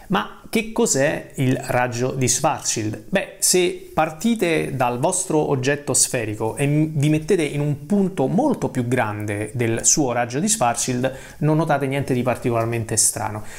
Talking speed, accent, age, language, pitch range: 150 wpm, native, 30-49, Italian, 120-155 Hz